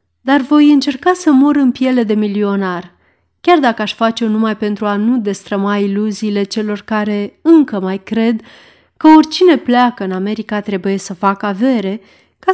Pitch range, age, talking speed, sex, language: 200-250 Hz, 30-49, 165 wpm, female, Romanian